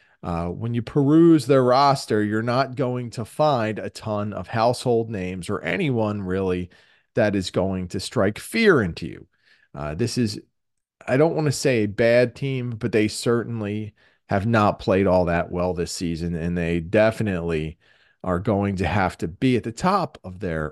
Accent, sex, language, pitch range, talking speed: American, male, English, 90-125 Hz, 180 wpm